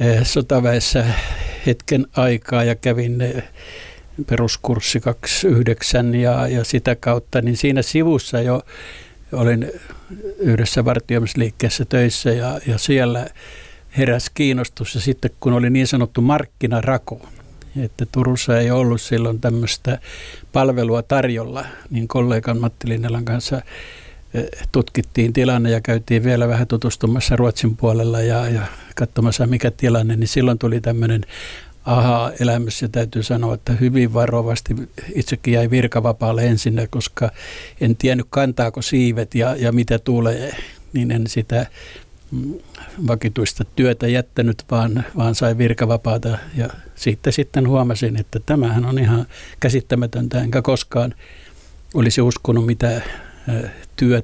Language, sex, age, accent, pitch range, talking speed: Finnish, male, 60-79, native, 115-125 Hz, 120 wpm